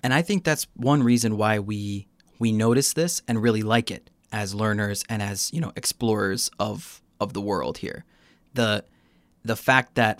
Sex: male